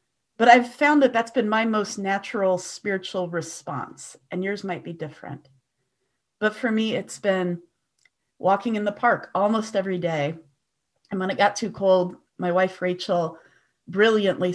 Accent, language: American, English